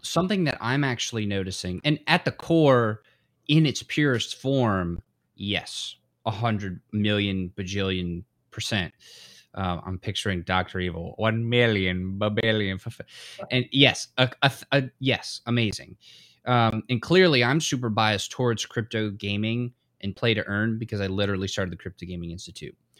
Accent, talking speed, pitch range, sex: American, 145 wpm, 100-130 Hz, male